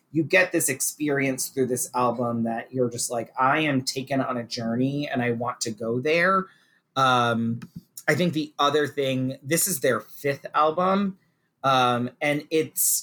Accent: American